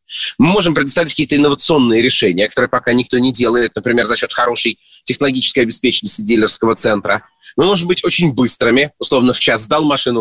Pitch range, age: 115-145 Hz, 30-49